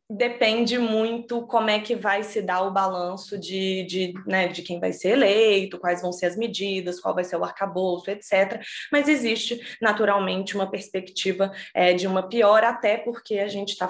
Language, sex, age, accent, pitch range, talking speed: Portuguese, female, 20-39, Brazilian, 180-220 Hz, 175 wpm